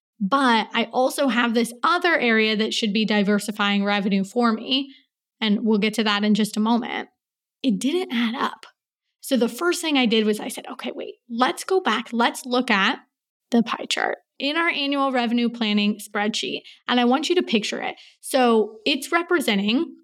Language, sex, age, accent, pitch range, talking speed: English, female, 20-39, American, 210-255 Hz, 190 wpm